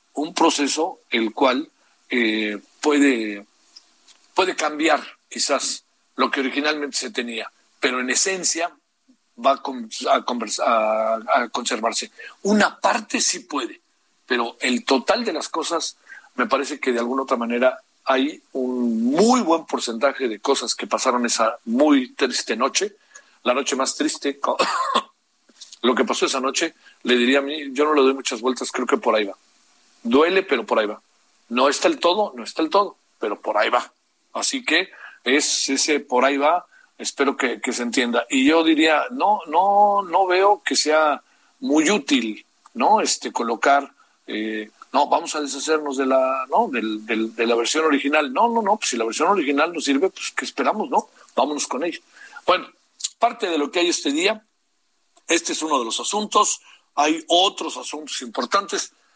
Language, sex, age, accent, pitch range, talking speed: Spanish, male, 50-69, Mexican, 125-205 Hz, 170 wpm